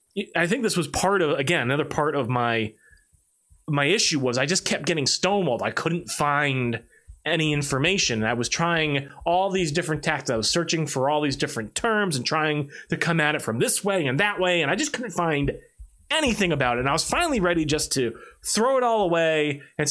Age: 30-49